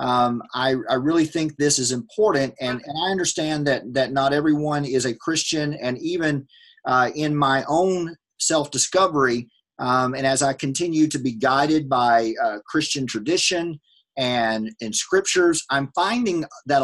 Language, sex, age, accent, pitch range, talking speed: English, male, 40-59, American, 130-175 Hz, 155 wpm